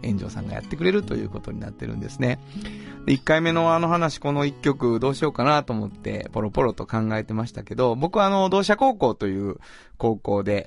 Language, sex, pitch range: Japanese, male, 105-145 Hz